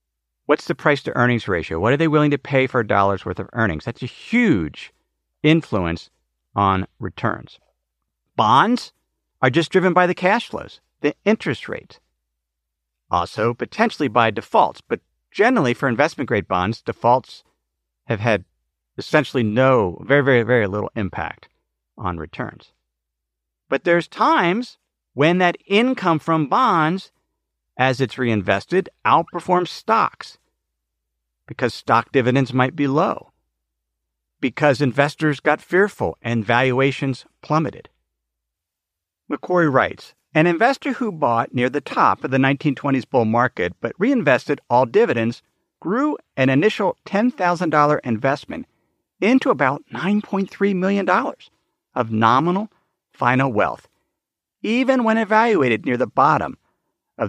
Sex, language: male, English